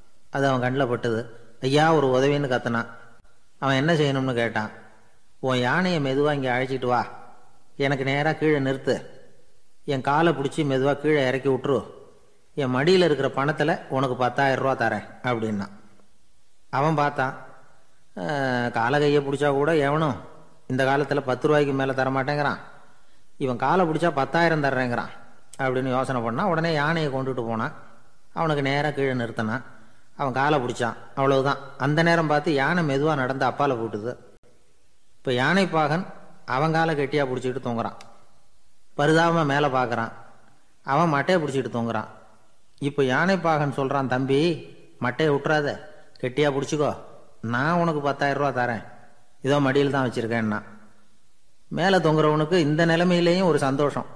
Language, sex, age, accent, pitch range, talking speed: Tamil, male, 30-49, native, 120-150 Hz, 130 wpm